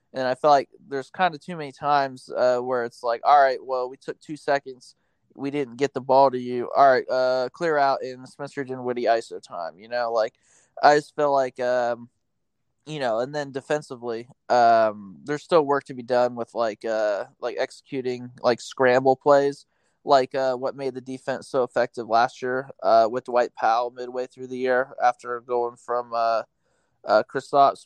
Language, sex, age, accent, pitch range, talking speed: English, male, 20-39, American, 120-140 Hz, 195 wpm